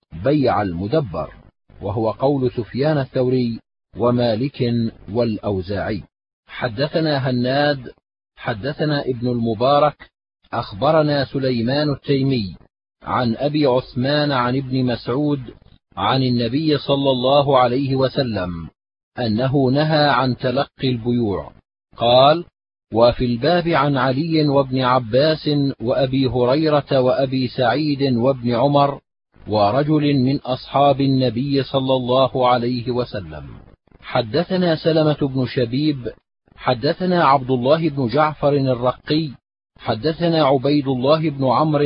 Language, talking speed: Arabic, 100 wpm